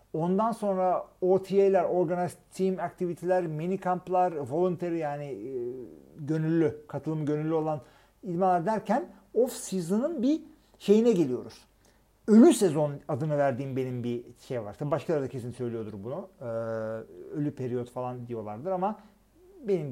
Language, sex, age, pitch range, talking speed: Turkish, male, 50-69, 145-215 Hz, 115 wpm